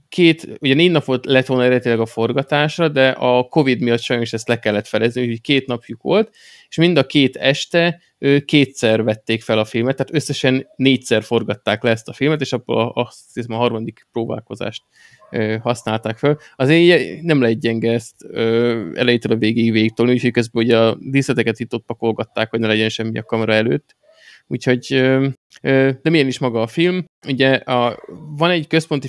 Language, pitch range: Hungarian, 115-140 Hz